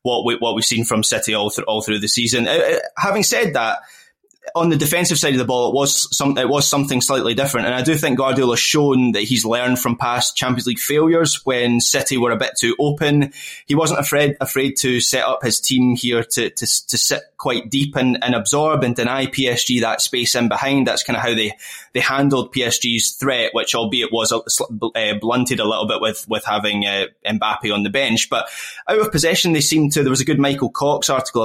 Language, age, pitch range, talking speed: English, 20-39, 115-140 Hz, 225 wpm